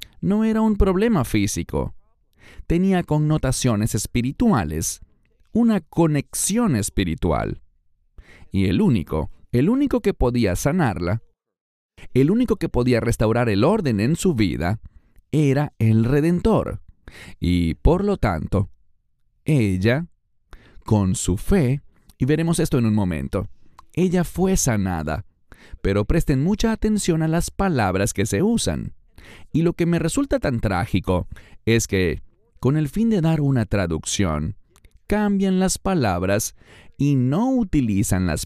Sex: male